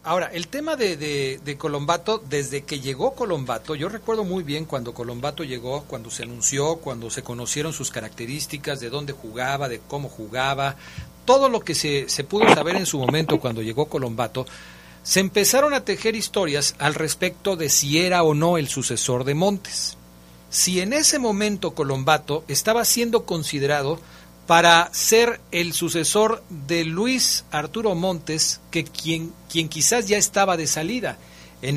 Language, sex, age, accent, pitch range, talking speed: Spanish, male, 40-59, Mexican, 135-195 Hz, 160 wpm